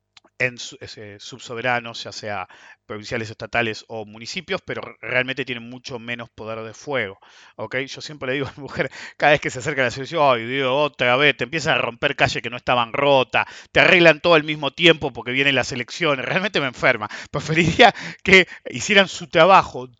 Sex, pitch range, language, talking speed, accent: male, 110-160 Hz, English, 175 wpm, Argentinian